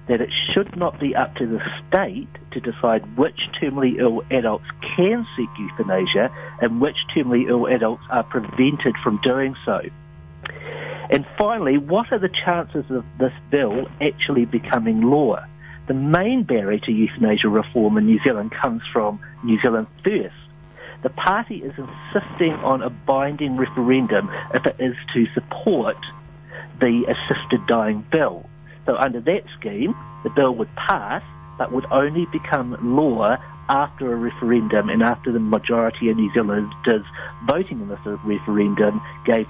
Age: 50-69